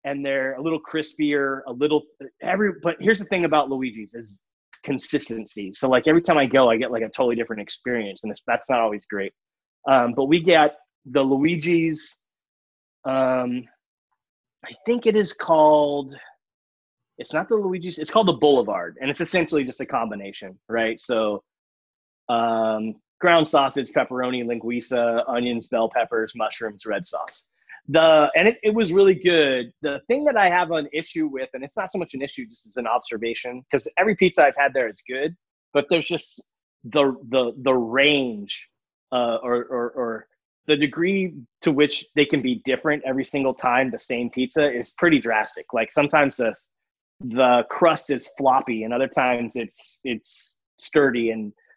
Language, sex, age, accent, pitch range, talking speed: English, male, 20-39, American, 120-165 Hz, 175 wpm